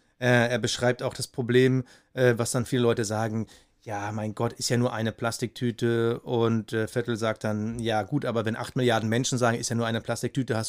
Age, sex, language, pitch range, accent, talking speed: 30-49, male, German, 115-140 Hz, German, 200 wpm